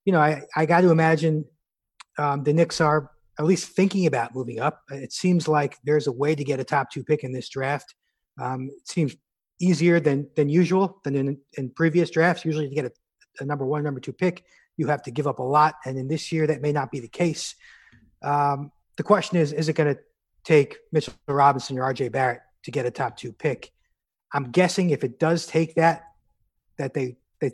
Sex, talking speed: male, 220 wpm